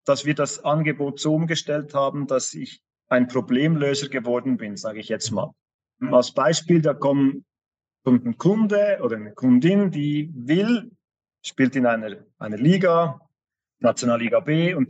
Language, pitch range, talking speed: German, 125-165 Hz, 145 wpm